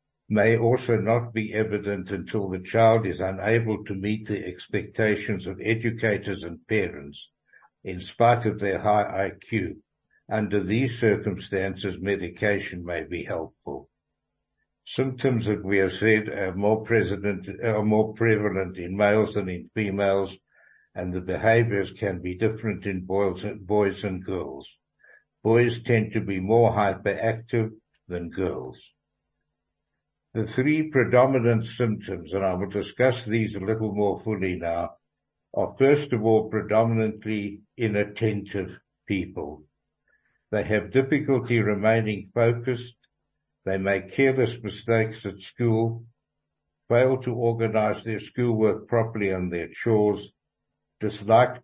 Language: English